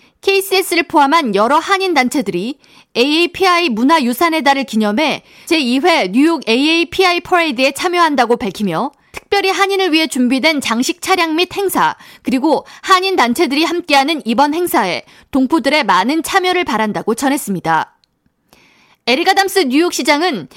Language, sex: Korean, female